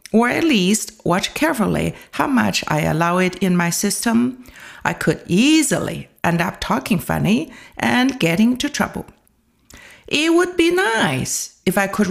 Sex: female